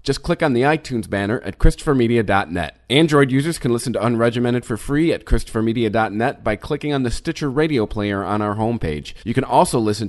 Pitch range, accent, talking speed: 110-150 Hz, American, 190 wpm